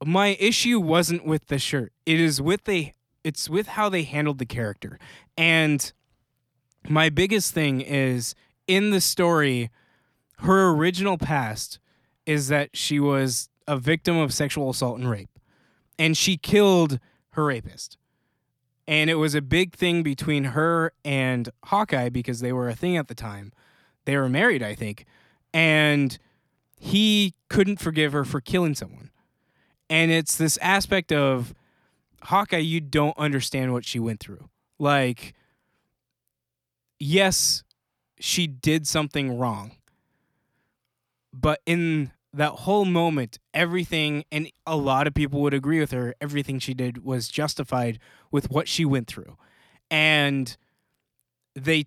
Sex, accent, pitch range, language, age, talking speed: male, American, 125-160 Hz, English, 20-39, 140 wpm